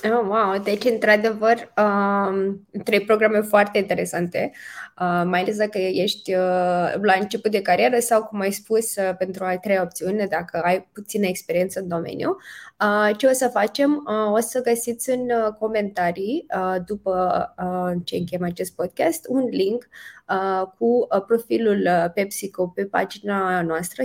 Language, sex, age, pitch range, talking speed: Romanian, female, 20-39, 185-230 Hz, 150 wpm